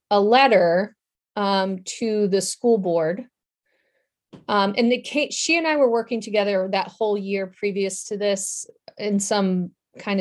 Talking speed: 155 wpm